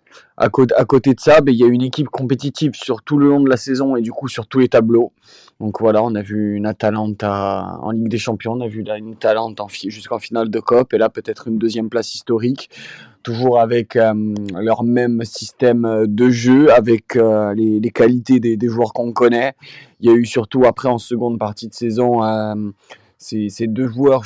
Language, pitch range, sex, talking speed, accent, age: French, 105-120 Hz, male, 210 wpm, French, 20-39